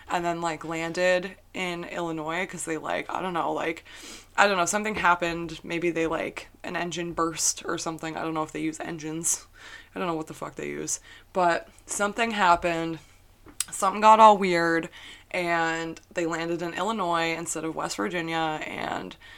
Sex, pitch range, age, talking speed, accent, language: female, 165-195 Hz, 20-39, 180 wpm, American, English